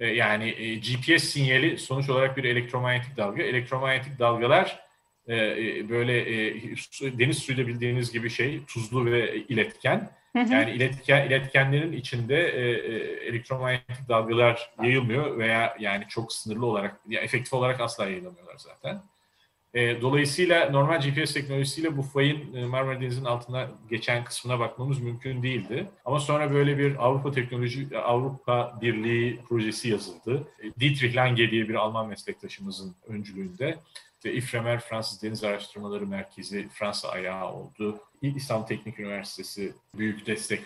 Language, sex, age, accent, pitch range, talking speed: Turkish, male, 40-59, native, 110-135 Hz, 120 wpm